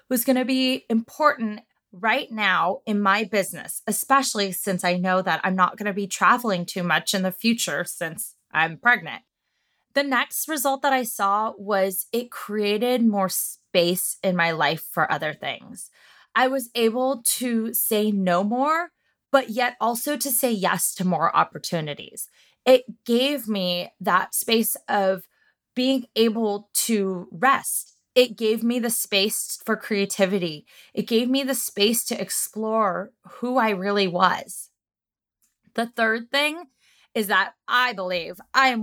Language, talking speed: English, 150 wpm